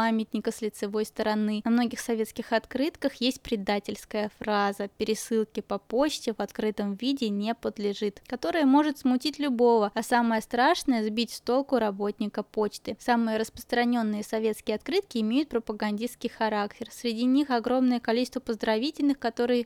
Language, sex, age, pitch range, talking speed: Russian, female, 20-39, 225-270 Hz, 135 wpm